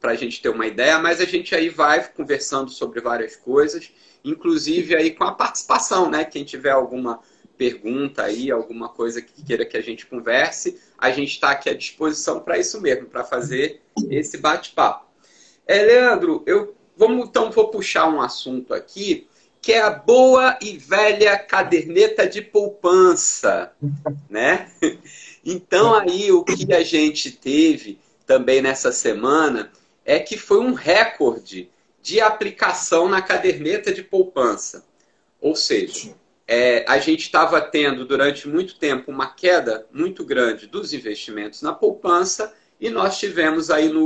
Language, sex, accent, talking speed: Portuguese, male, Brazilian, 150 wpm